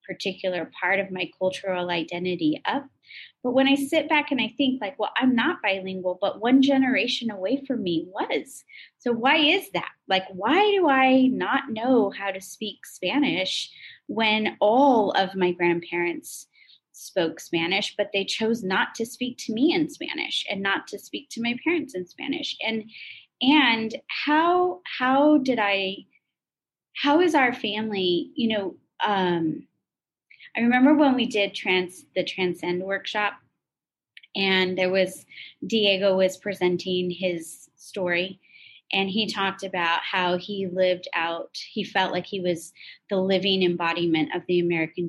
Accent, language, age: American, English, 20-39